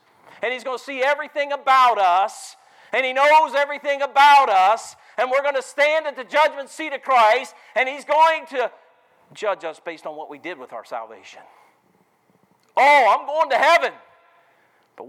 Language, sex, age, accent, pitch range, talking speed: English, male, 50-69, American, 245-315 Hz, 180 wpm